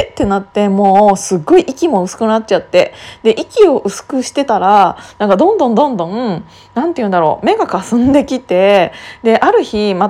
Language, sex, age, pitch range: Japanese, female, 20-39, 195-300 Hz